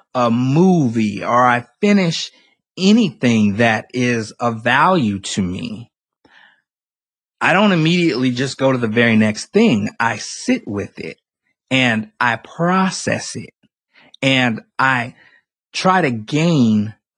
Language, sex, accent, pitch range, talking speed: English, male, American, 115-165 Hz, 120 wpm